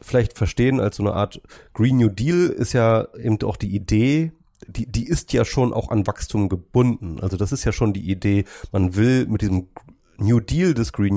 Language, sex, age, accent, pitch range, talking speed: German, male, 30-49, German, 95-115 Hz, 210 wpm